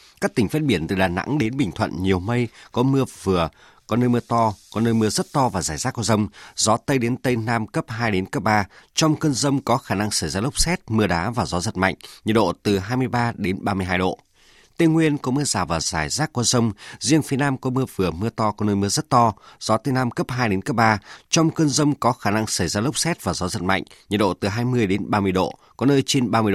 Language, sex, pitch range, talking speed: Vietnamese, male, 100-130 Hz, 265 wpm